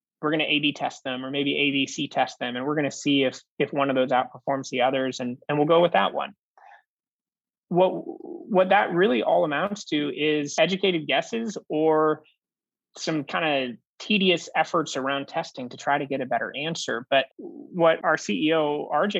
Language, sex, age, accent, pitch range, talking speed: English, male, 20-39, American, 135-165 Hz, 190 wpm